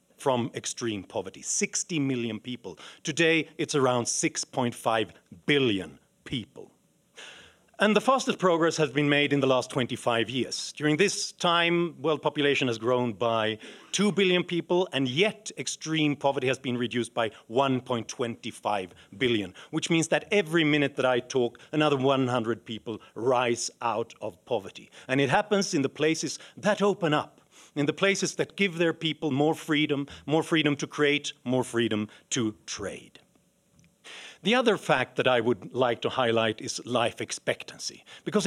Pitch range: 120-170 Hz